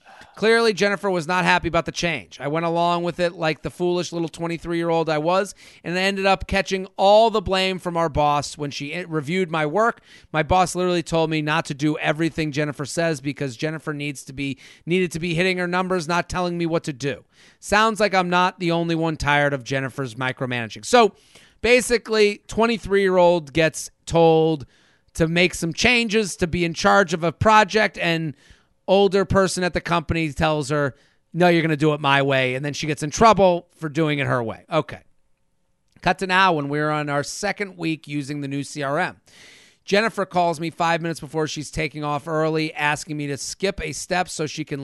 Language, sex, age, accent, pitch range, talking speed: English, male, 30-49, American, 150-185 Hz, 200 wpm